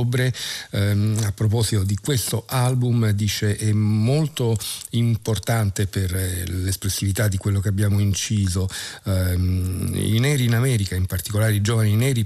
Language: Italian